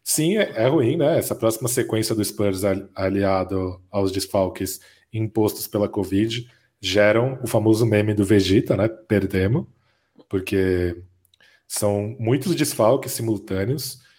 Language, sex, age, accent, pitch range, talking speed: Portuguese, male, 20-39, Brazilian, 100-125 Hz, 120 wpm